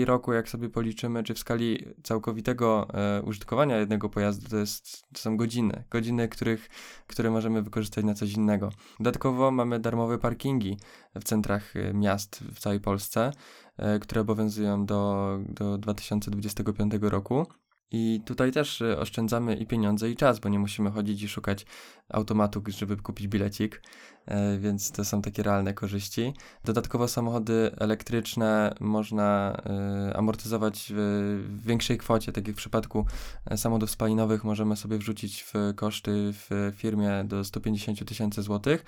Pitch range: 105-115 Hz